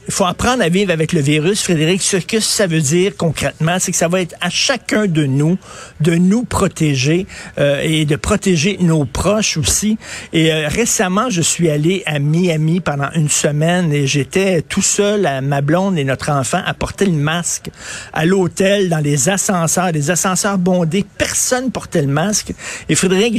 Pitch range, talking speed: 145-195 Hz, 185 wpm